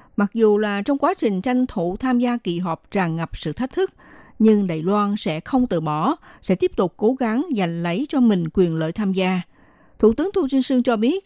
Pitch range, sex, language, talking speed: 180-245 Hz, female, Vietnamese, 235 wpm